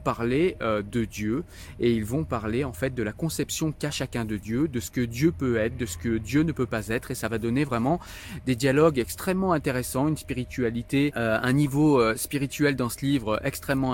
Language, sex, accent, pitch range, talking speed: French, male, French, 115-145 Hz, 215 wpm